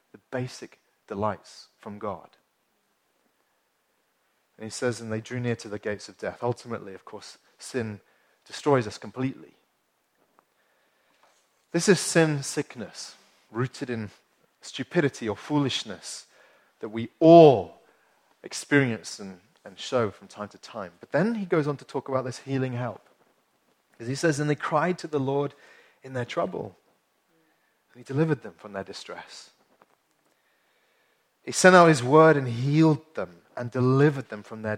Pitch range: 120-160 Hz